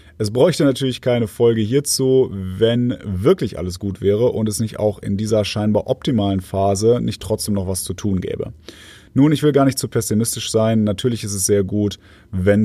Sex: male